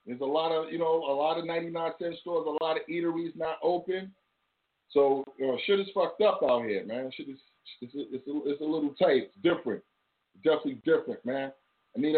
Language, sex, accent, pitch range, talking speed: English, male, American, 120-150 Hz, 225 wpm